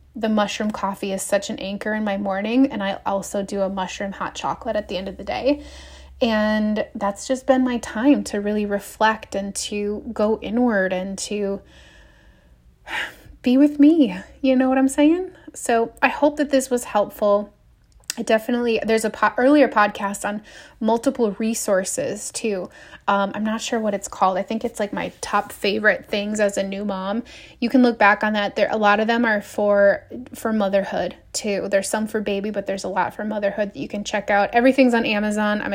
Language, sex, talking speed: English, female, 200 wpm